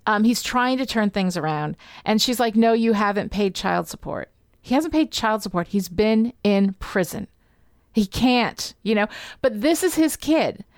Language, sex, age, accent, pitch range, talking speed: English, female, 40-59, American, 190-245 Hz, 190 wpm